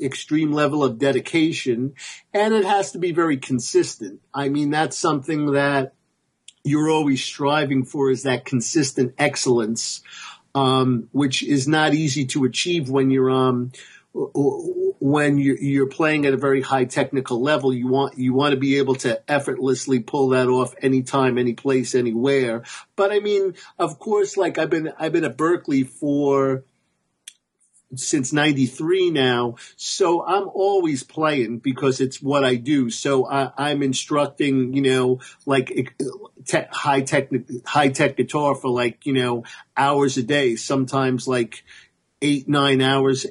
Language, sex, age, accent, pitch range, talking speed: English, male, 50-69, American, 130-150 Hz, 150 wpm